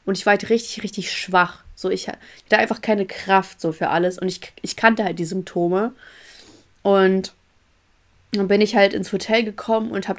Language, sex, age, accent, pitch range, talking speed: German, female, 20-39, German, 180-225 Hz, 195 wpm